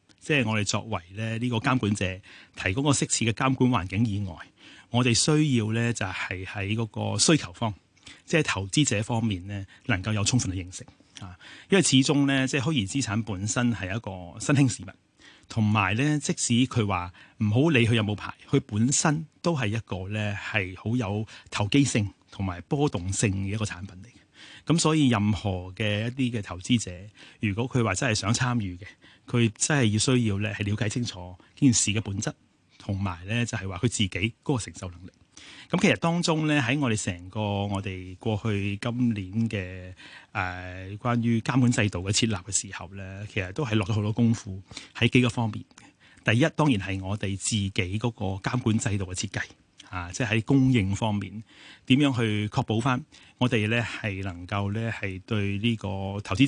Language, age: Chinese, 30-49